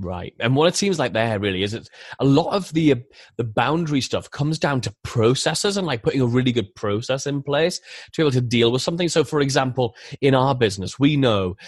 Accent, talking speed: British, 235 wpm